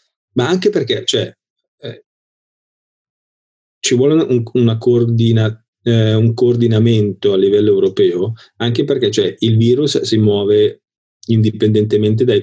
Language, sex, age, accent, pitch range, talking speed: Italian, male, 30-49, native, 105-125 Hz, 120 wpm